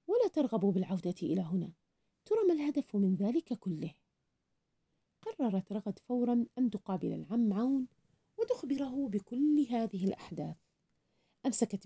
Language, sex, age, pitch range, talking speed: Arabic, female, 40-59, 190-265 Hz, 115 wpm